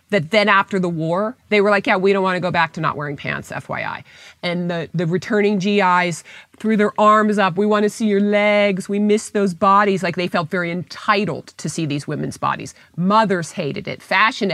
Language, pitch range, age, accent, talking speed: English, 160-200 Hz, 40-59, American, 210 wpm